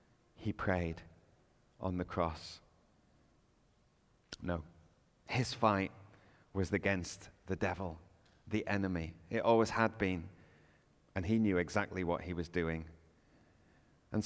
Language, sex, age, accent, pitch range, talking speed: English, male, 30-49, British, 90-120 Hz, 115 wpm